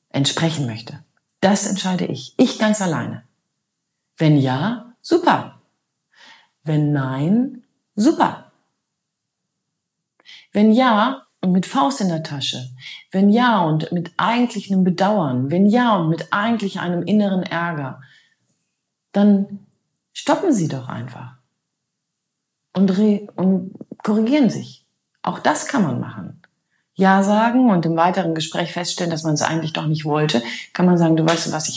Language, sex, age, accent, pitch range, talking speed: German, female, 40-59, German, 160-215 Hz, 135 wpm